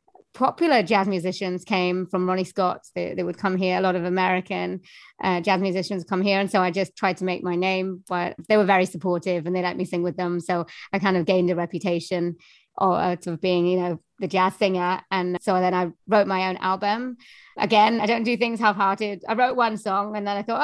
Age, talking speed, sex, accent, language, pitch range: 30-49, 230 wpm, female, British, English, 180-210 Hz